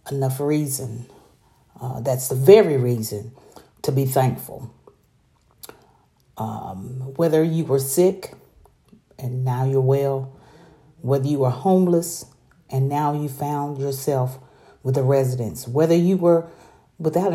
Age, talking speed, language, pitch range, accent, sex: 40-59, 120 wpm, English, 130-160 Hz, American, female